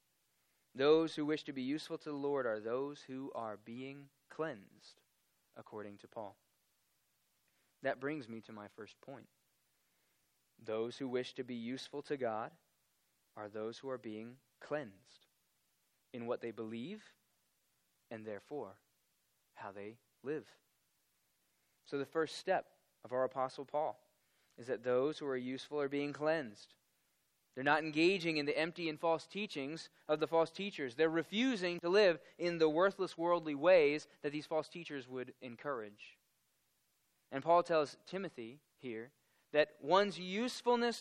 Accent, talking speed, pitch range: American, 150 wpm, 115-160 Hz